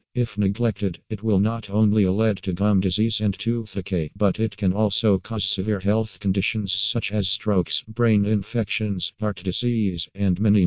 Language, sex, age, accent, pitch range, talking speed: English, male, 50-69, American, 95-110 Hz, 170 wpm